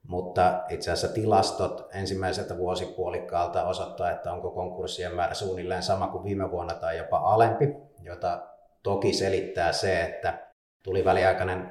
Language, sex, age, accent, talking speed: Finnish, male, 30-49, native, 135 wpm